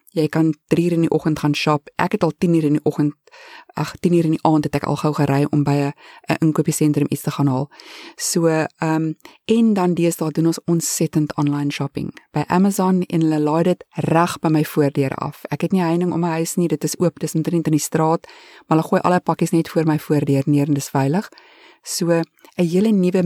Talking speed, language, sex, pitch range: 245 wpm, English, female, 150-185 Hz